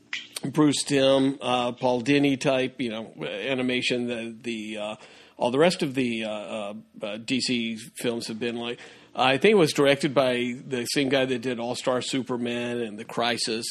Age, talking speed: 50-69, 185 wpm